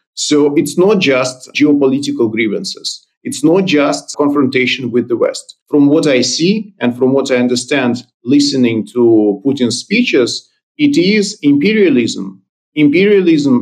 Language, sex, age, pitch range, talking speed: English, male, 40-59, 125-180 Hz, 130 wpm